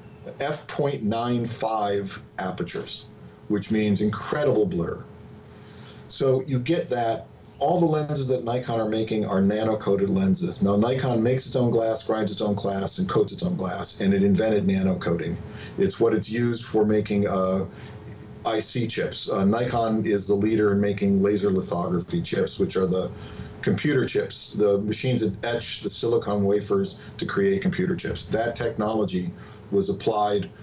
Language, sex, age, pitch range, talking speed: English, male, 40-59, 105-125 Hz, 155 wpm